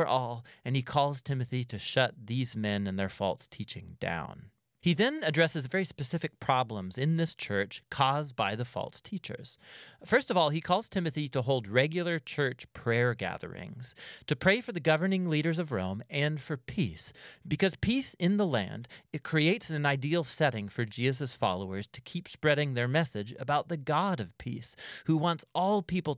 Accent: American